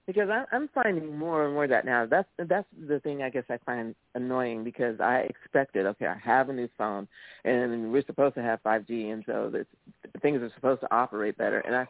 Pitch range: 115-150 Hz